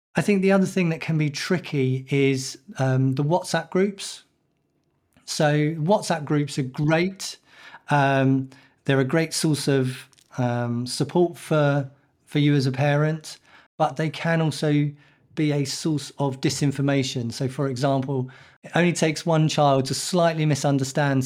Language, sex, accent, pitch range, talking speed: English, male, British, 130-155 Hz, 150 wpm